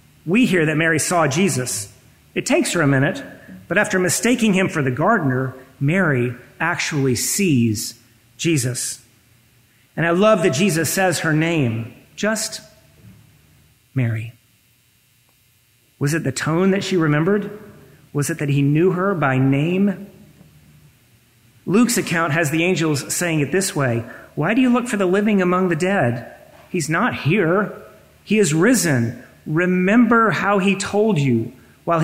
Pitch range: 130-190 Hz